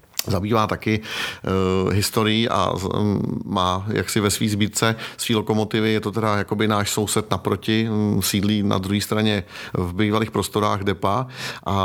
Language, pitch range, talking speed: Czech, 105-115 Hz, 160 wpm